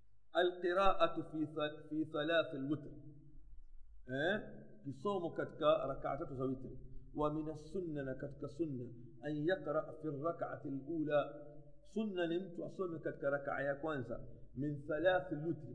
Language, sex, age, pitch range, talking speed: Swahili, male, 50-69, 135-175 Hz, 65 wpm